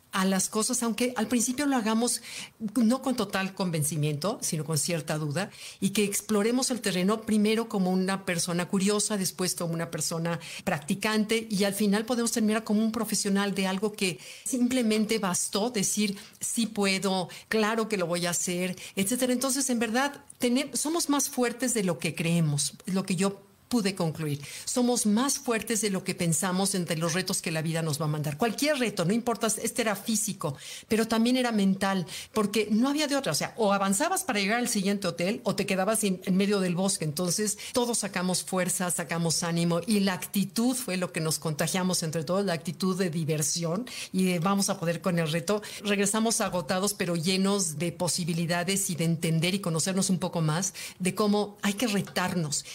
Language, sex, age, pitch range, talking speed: Spanish, female, 50-69, 175-220 Hz, 190 wpm